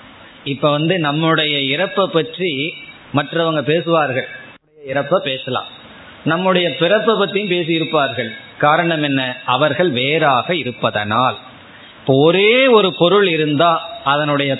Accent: native